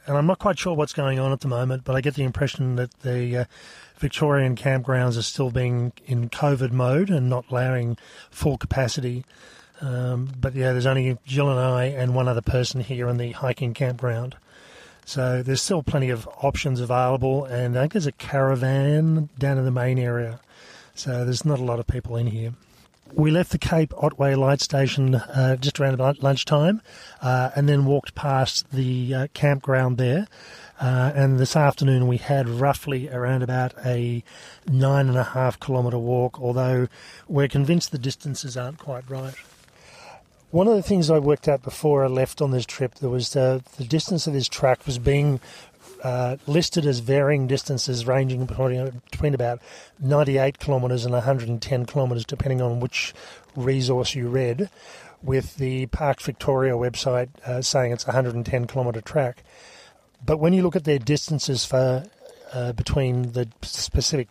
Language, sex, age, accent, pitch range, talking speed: English, male, 30-49, Australian, 125-140 Hz, 175 wpm